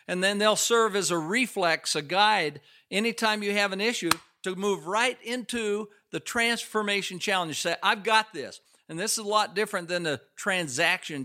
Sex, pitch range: male, 180-220 Hz